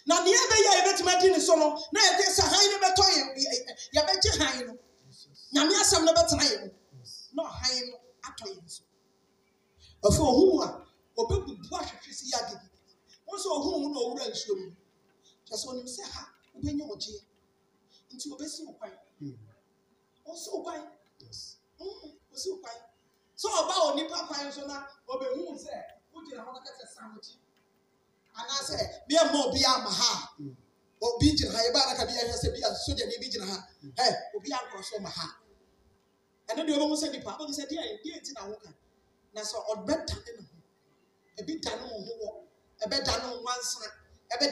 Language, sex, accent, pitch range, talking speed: English, male, Nigerian, 230-340 Hz, 115 wpm